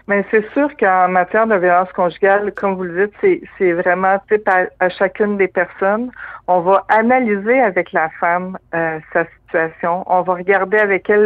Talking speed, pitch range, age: 180 wpm, 175-205 Hz, 60-79